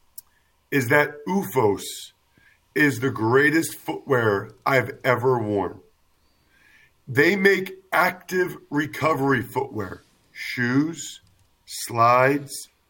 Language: English